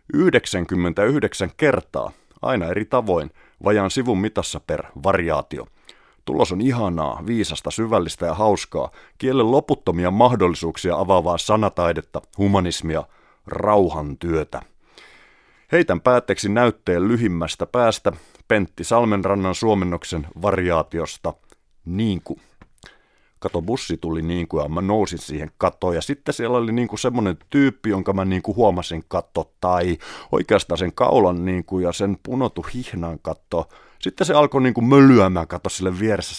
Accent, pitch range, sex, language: native, 90-120 Hz, male, Finnish